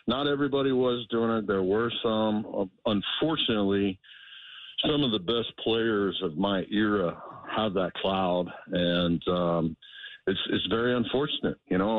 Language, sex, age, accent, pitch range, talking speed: English, male, 50-69, American, 100-130 Hz, 140 wpm